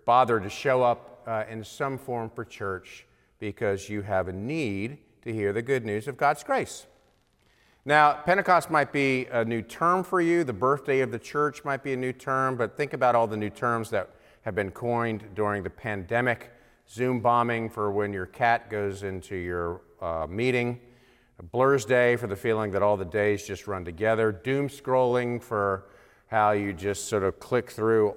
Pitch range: 100-125 Hz